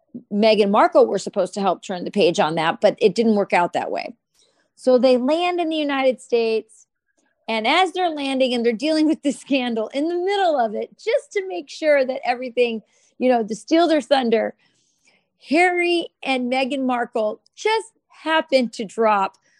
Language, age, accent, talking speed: English, 40-59, American, 185 wpm